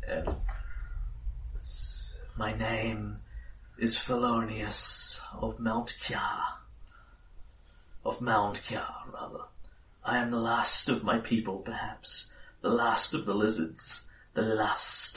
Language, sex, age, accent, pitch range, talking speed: English, male, 40-59, British, 100-115 Hz, 105 wpm